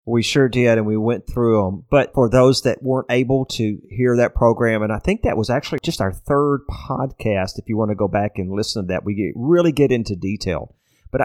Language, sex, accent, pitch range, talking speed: English, male, American, 105-145 Hz, 240 wpm